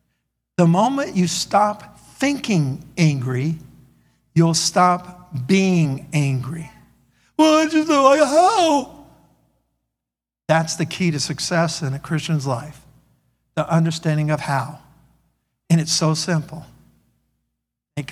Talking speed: 115 wpm